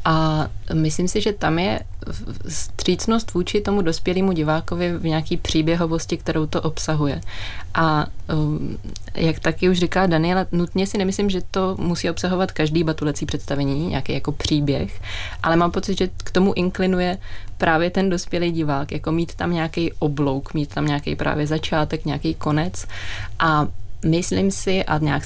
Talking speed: 150 wpm